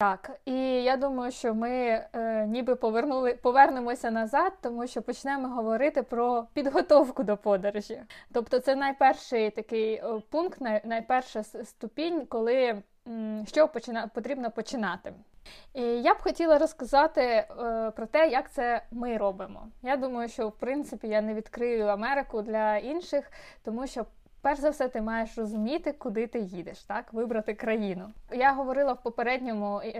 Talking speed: 150 wpm